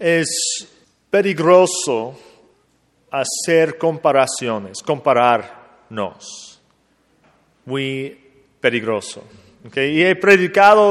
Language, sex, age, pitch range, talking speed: English, male, 40-59, 120-170 Hz, 60 wpm